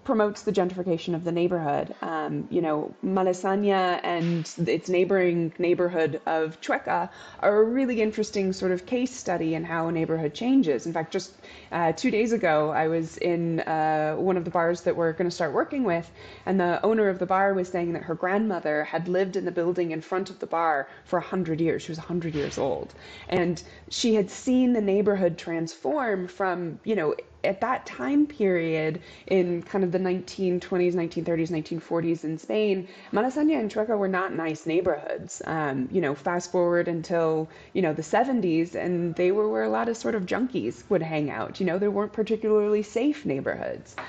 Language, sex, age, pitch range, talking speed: English, female, 20-39, 165-200 Hz, 190 wpm